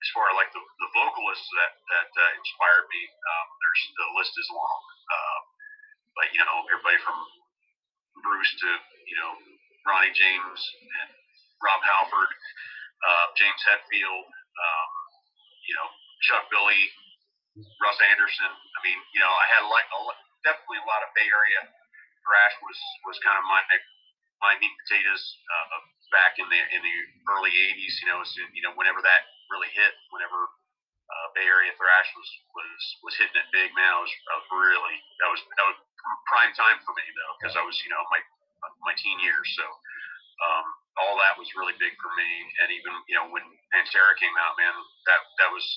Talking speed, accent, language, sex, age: 180 wpm, American, English, male, 40-59